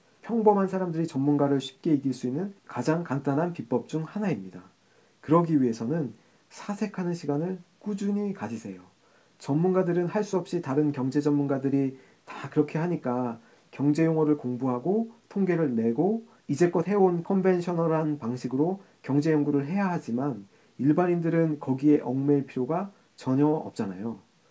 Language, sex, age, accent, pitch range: Korean, male, 40-59, native, 130-180 Hz